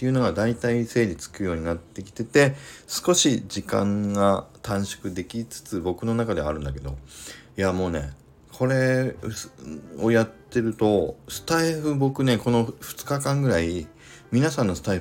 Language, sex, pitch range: Japanese, male, 90-125 Hz